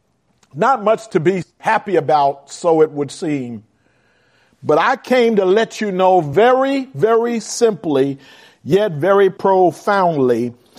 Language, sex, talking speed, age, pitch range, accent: English, male, 130 wpm, 50-69, 185-270 Hz, American